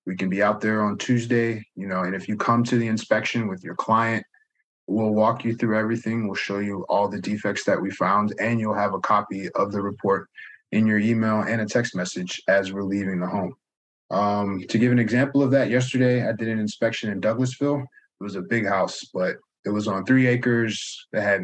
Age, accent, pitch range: 20-39, American, 100-115 Hz